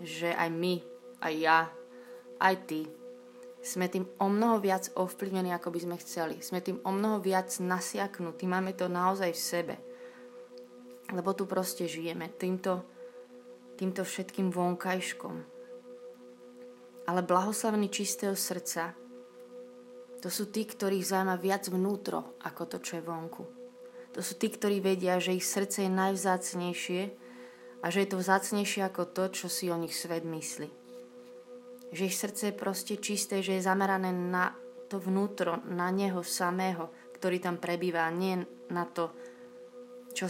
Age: 20-39